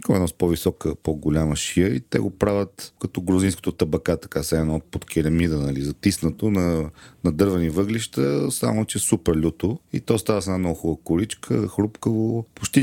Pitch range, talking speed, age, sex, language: 80-100 Hz, 180 wpm, 40-59, male, Bulgarian